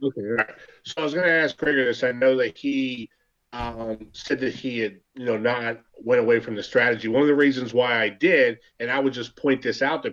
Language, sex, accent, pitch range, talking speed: English, male, American, 125-165 Hz, 255 wpm